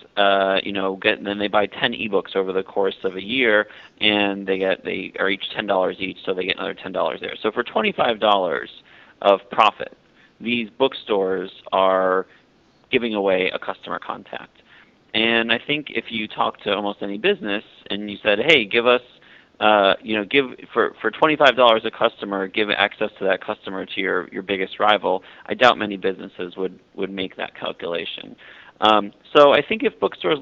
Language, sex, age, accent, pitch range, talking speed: English, male, 30-49, American, 100-115 Hz, 185 wpm